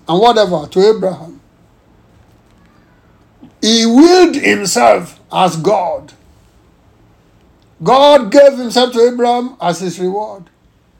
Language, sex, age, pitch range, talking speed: English, male, 60-79, 185-255 Hz, 95 wpm